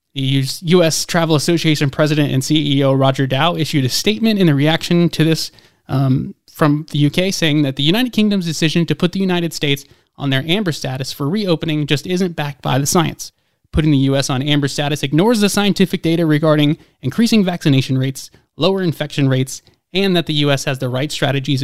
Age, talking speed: 20-39, 190 wpm